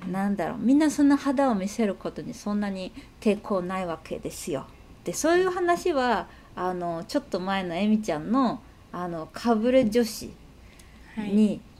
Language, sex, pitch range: Japanese, female, 180-230 Hz